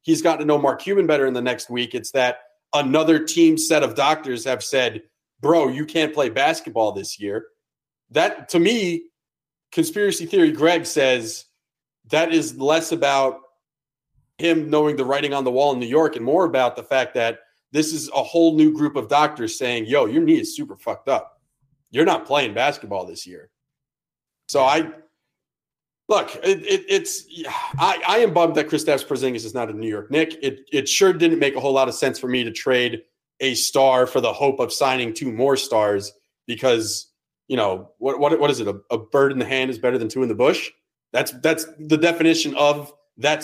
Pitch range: 130-165 Hz